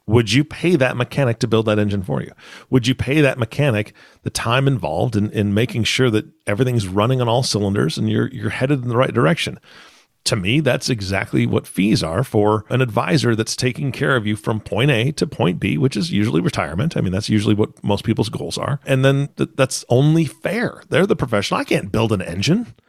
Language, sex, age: English, male, 40-59